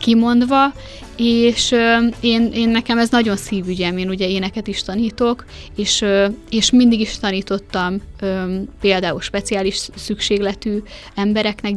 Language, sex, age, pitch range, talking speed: Hungarian, female, 20-39, 190-220 Hz, 110 wpm